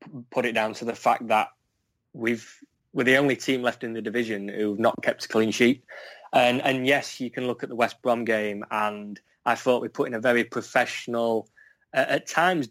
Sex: male